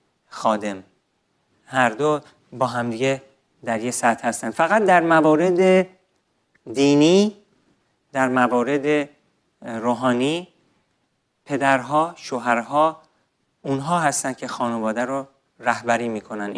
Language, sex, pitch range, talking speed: Persian, male, 125-165 Hz, 90 wpm